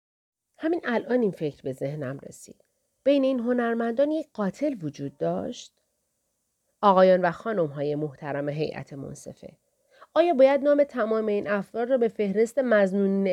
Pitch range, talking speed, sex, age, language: 170-245 Hz, 135 wpm, female, 40-59, Persian